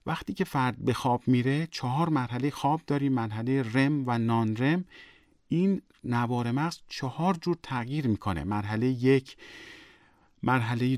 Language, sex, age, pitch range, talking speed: Persian, male, 40-59, 115-145 Hz, 135 wpm